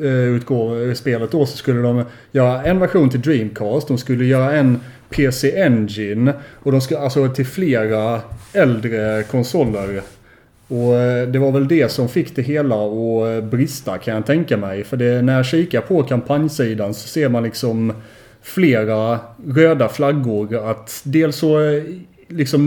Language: Swedish